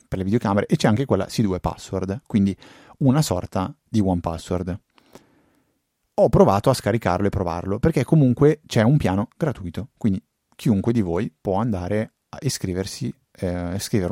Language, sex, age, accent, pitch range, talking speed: Italian, male, 30-49, native, 95-120 Hz, 155 wpm